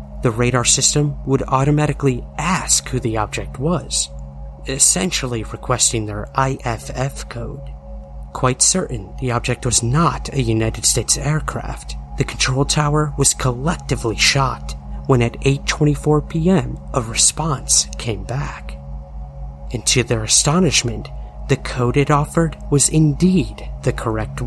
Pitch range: 100-135 Hz